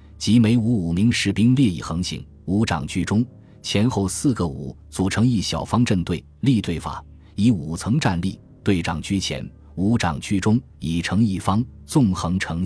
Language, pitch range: Chinese, 85-115 Hz